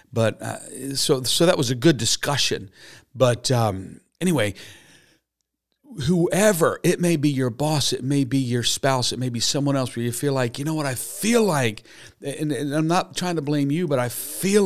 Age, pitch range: 50-69, 110-145 Hz